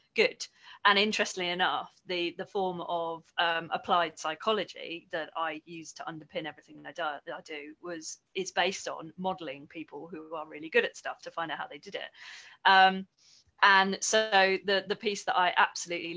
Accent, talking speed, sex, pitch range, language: British, 185 wpm, female, 170-210 Hz, English